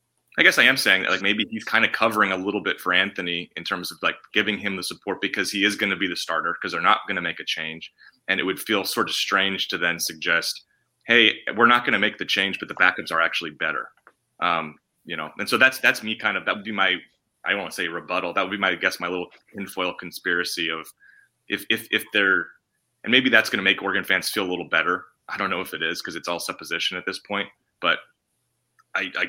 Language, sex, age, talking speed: English, male, 30-49, 260 wpm